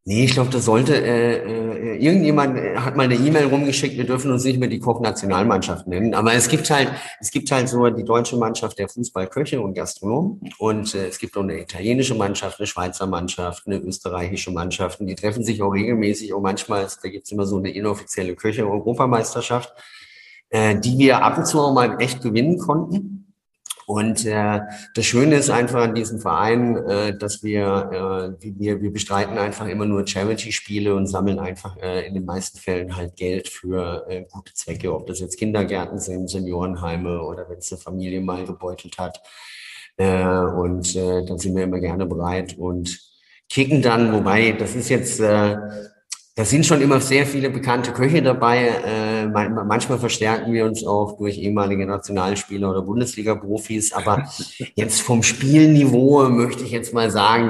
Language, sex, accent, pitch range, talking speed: German, male, German, 100-130 Hz, 180 wpm